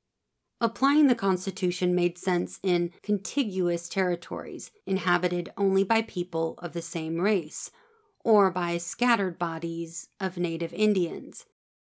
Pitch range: 175-215 Hz